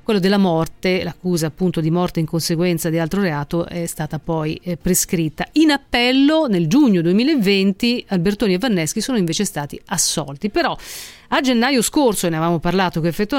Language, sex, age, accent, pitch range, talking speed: Italian, female, 40-59, native, 175-235 Hz, 175 wpm